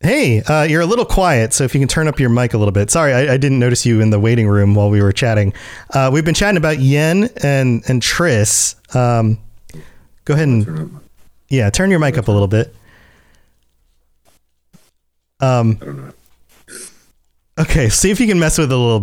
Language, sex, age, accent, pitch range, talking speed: English, male, 30-49, American, 110-160 Hz, 200 wpm